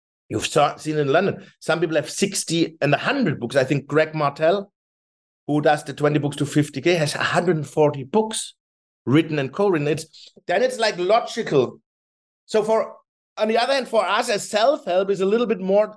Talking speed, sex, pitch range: 180 wpm, male, 155-205 Hz